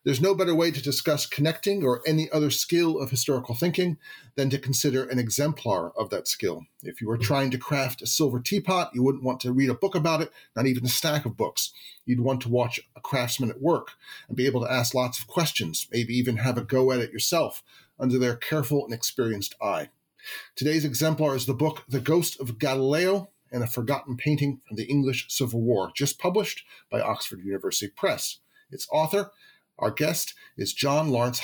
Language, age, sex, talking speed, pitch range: English, 40-59, male, 205 wpm, 125-155 Hz